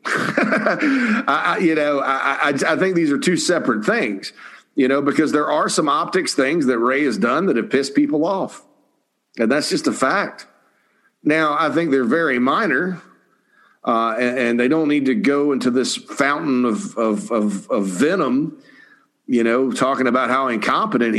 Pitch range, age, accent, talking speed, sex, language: 110-140 Hz, 50-69, American, 180 wpm, male, English